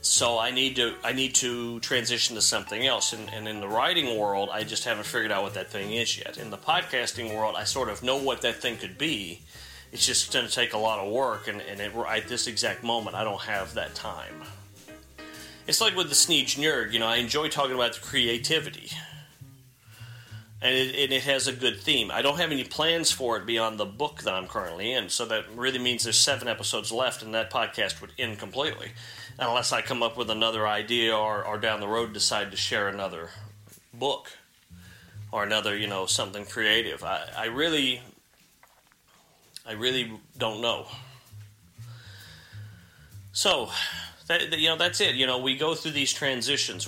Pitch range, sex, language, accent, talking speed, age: 105-130 Hz, male, English, American, 195 wpm, 40-59